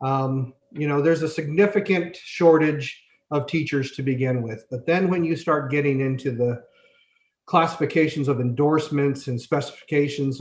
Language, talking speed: English, 145 wpm